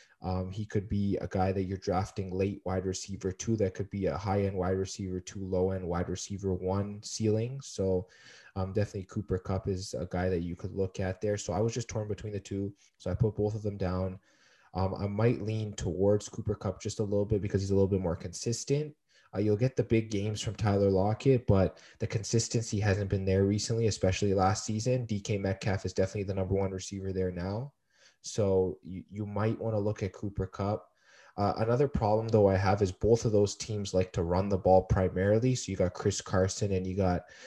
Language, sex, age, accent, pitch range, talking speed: English, male, 20-39, American, 95-110 Hz, 225 wpm